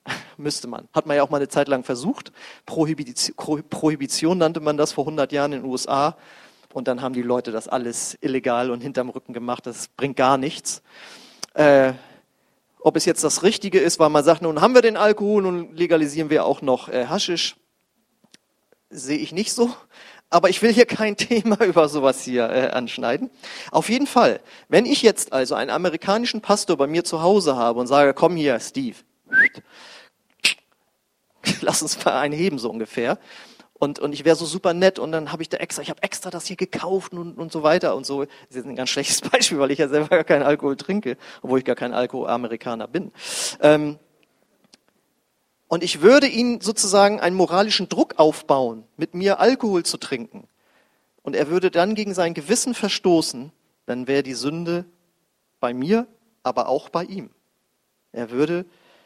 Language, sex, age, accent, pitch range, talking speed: German, male, 40-59, German, 140-195 Hz, 185 wpm